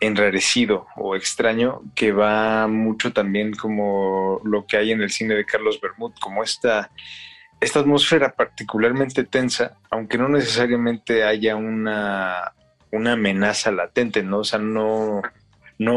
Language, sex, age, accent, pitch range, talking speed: Spanish, male, 20-39, Mexican, 100-115 Hz, 135 wpm